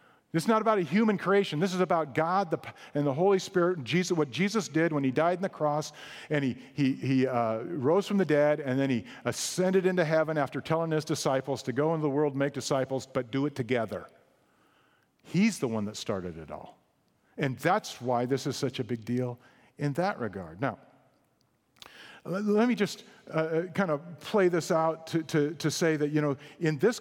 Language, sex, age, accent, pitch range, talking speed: English, male, 50-69, American, 135-190 Hz, 210 wpm